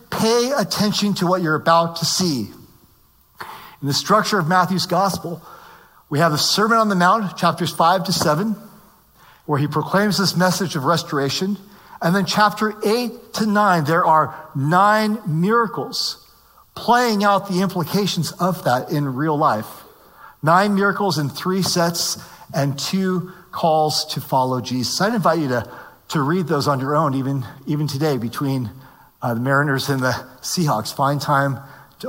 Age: 40-59